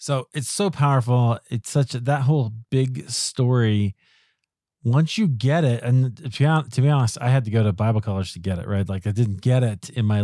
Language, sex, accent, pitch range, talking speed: English, male, American, 100-130 Hz, 210 wpm